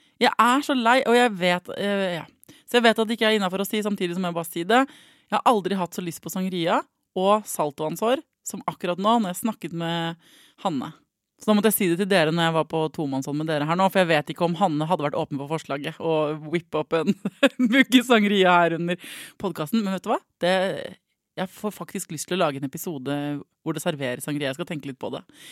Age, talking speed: 20-39, 245 wpm